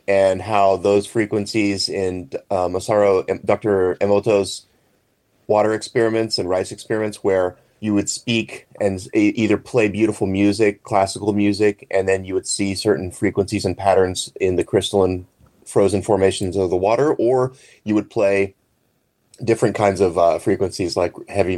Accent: American